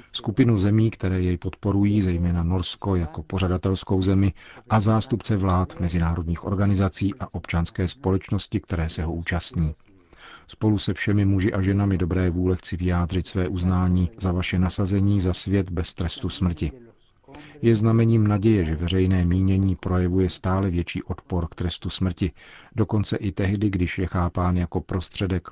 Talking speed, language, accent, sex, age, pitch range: 150 wpm, Czech, native, male, 40-59, 90-100 Hz